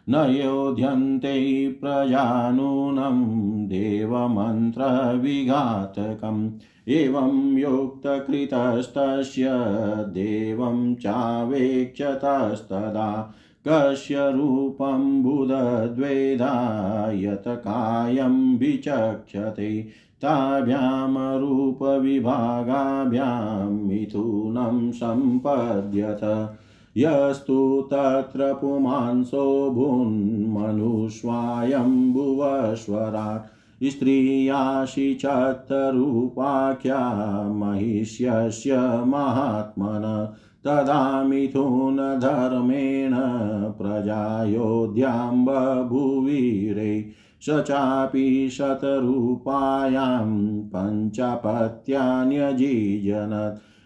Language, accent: Hindi, native